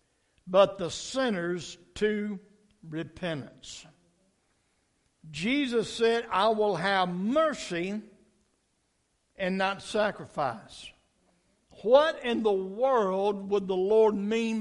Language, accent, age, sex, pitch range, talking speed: English, American, 60-79, male, 185-230 Hz, 90 wpm